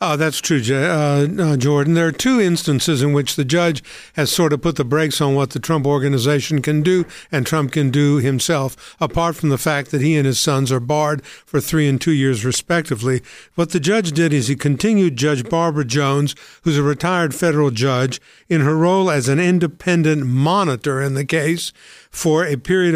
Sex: male